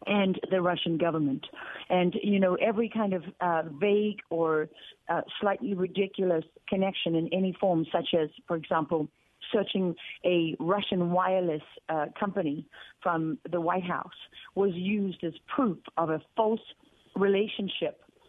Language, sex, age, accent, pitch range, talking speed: English, female, 40-59, American, 175-215 Hz, 140 wpm